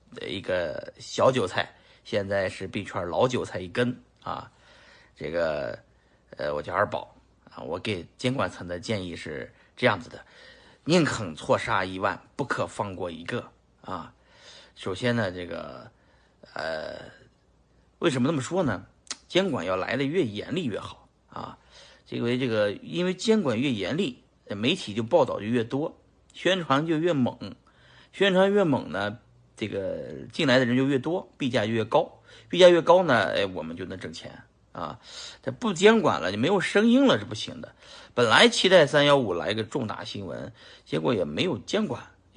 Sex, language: male, Chinese